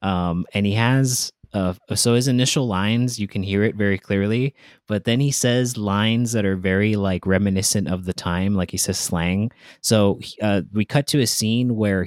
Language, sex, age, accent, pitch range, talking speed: English, male, 20-39, American, 95-110 Hz, 200 wpm